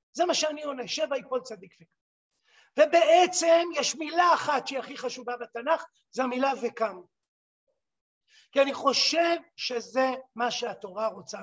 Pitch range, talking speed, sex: 245-315 Hz, 135 wpm, male